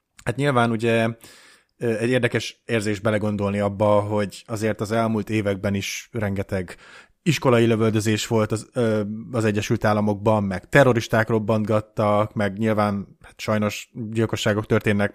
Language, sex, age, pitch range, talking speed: Hungarian, male, 20-39, 100-115 Hz, 125 wpm